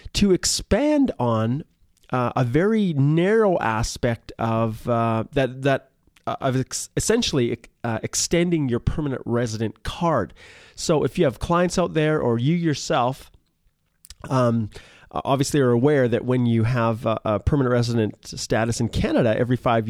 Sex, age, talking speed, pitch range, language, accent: male, 30-49, 150 wpm, 110-140 Hz, English, American